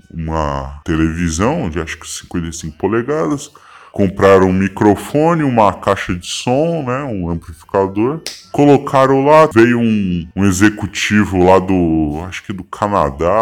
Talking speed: 130 wpm